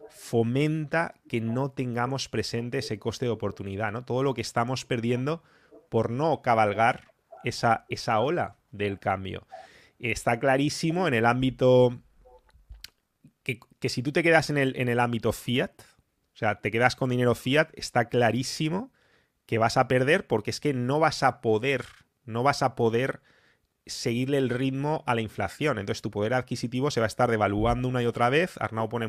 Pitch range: 110-135 Hz